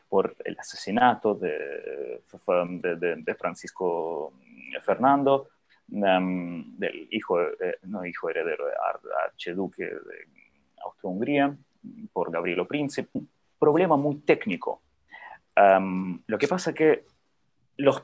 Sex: male